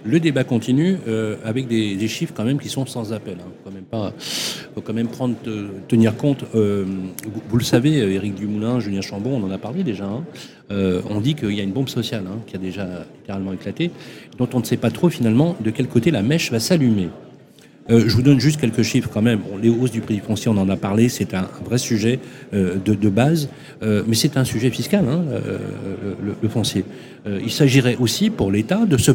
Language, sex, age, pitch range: French, male, 40-59, 105-135 Hz